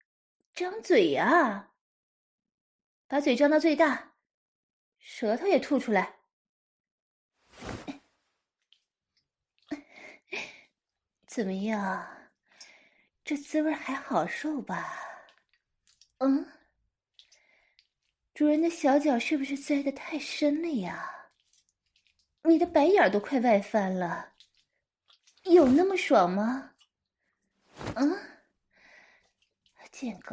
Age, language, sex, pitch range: 30-49, English, female, 235-310 Hz